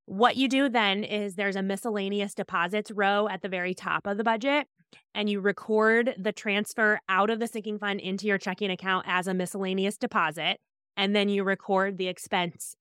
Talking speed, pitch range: 190 wpm, 180-215 Hz